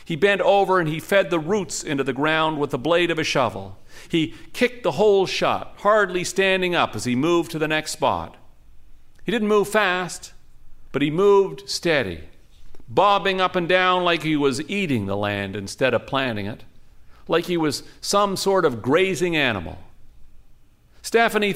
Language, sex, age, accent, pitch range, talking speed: English, male, 50-69, American, 125-200 Hz, 175 wpm